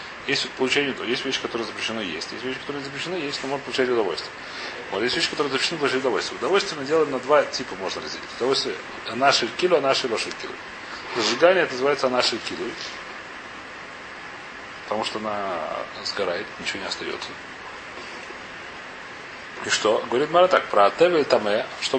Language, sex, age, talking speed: Russian, male, 30-49, 155 wpm